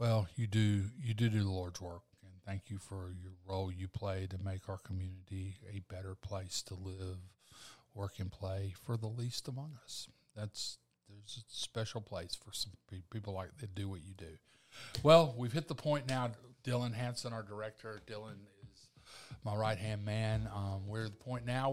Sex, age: male, 50-69